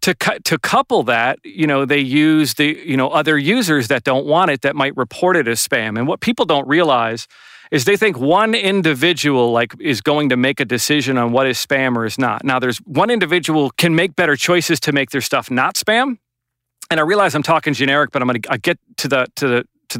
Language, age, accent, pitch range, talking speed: English, 40-59, American, 130-165 Hz, 235 wpm